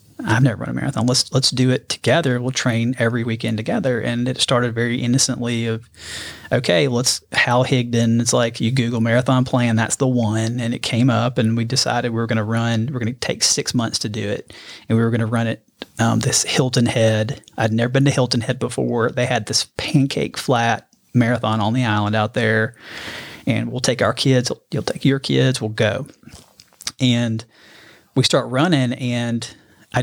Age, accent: 30-49, American